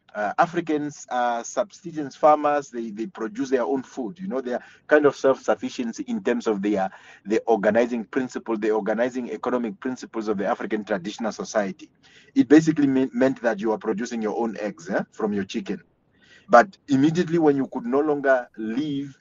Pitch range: 115-155 Hz